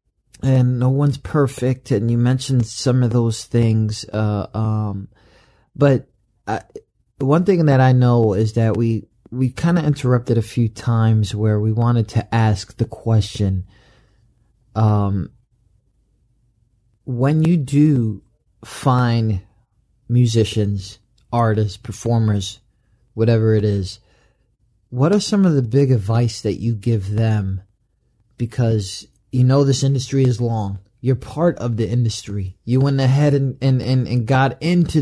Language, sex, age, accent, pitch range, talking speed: English, male, 30-49, American, 110-135 Hz, 135 wpm